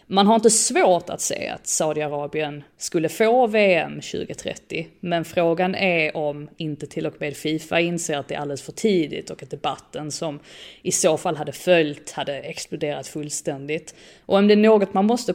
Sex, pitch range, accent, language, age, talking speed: female, 155-200 Hz, native, Swedish, 30-49, 185 wpm